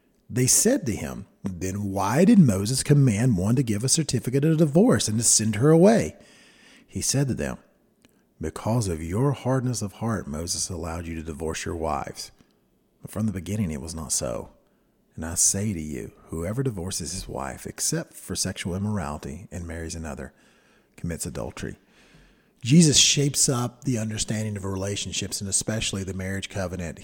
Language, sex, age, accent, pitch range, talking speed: English, male, 50-69, American, 90-125 Hz, 170 wpm